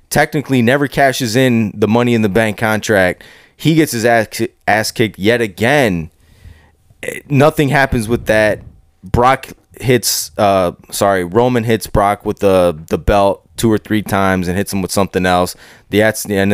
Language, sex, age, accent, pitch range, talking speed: English, male, 20-39, American, 95-120 Hz, 175 wpm